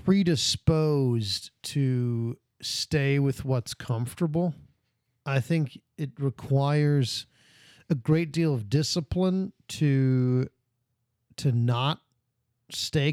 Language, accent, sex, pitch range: English, American, male, 120-165 Hz